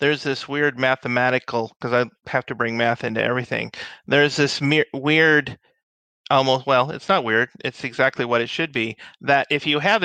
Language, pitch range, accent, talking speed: English, 130-175 Hz, American, 185 wpm